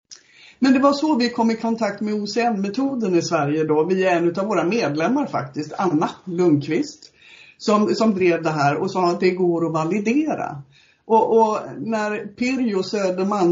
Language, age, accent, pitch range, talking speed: English, 60-79, Swedish, 170-215 Hz, 175 wpm